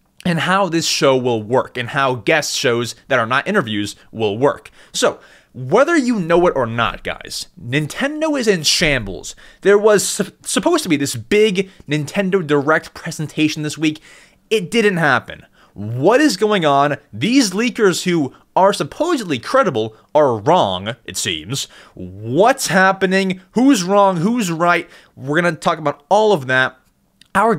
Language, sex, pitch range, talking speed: English, male, 135-205 Hz, 155 wpm